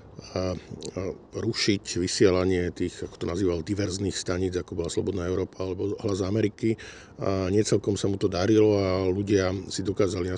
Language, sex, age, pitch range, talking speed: Slovak, male, 50-69, 95-110 Hz, 155 wpm